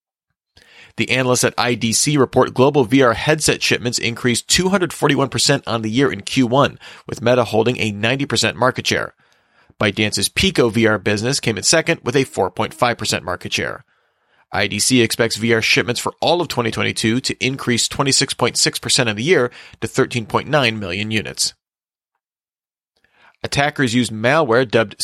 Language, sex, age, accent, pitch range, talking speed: English, male, 30-49, American, 115-140 Hz, 135 wpm